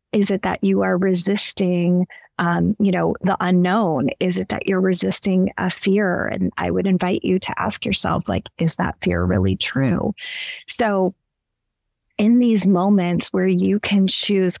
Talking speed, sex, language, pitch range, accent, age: 165 wpm, female, English, 180-210 Hz, American, 30-49